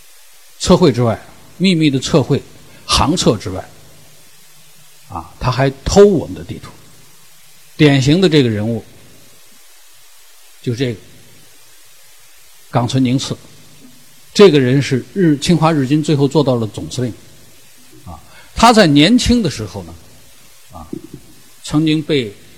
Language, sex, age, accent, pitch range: Chinese, male, 50-69, native, 130-155 Hz